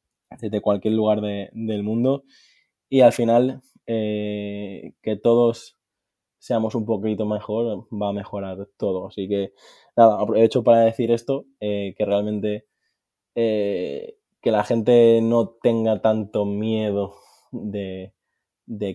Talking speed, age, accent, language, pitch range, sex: 125 wpm, 20-39, Spanish, Spanish, 100-115 Hz, male